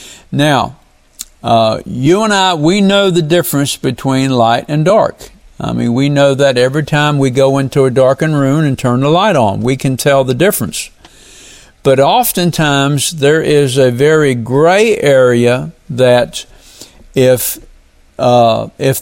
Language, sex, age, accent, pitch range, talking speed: English, male, 60-79, American, 120-165 Hz, 150 wpm